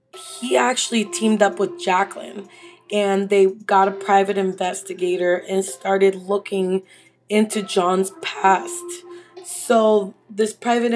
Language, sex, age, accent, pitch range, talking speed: English, female, 20-39, American, 190-225 Hz, 115 wpm